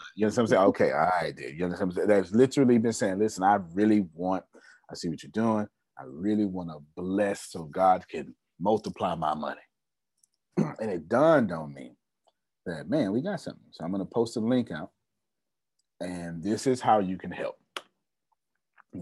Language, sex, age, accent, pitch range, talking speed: English, male, 30-49, American, 95-125 Hz, 195 wpm